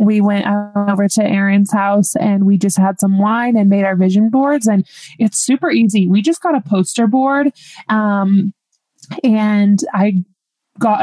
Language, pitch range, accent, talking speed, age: English, 195-235 Hz, American, 170 wpm, 20-39